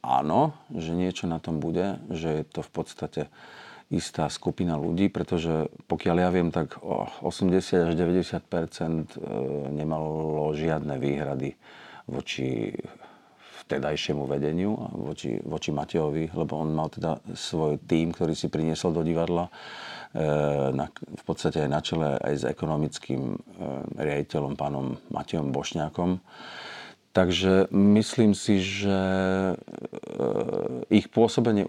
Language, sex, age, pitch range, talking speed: Slovak, male, 50-69, 80-95 Hz, 110 wpm